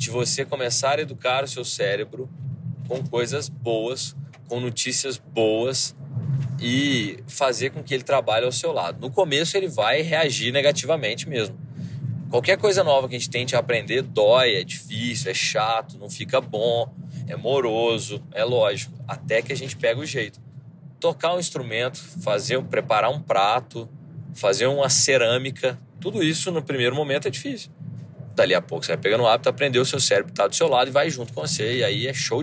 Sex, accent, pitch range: male, Brazilian, 125-150 Hz